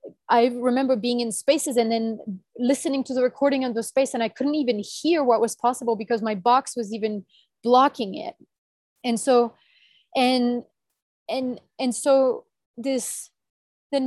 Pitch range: 220-255 Hz